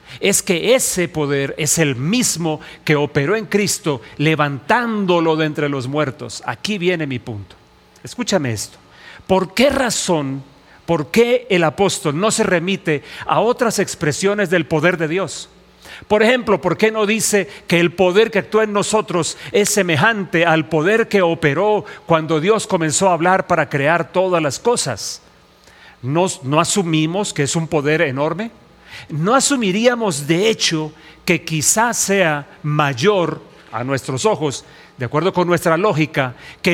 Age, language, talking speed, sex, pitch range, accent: 40-59, English, 150 wpm, male, 150-200 Hz, Mexican